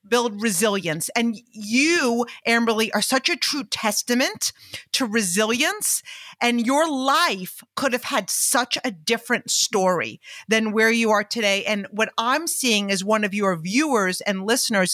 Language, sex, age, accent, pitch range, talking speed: English, female, 40-59, American, 205-255 Hz, 155 wpm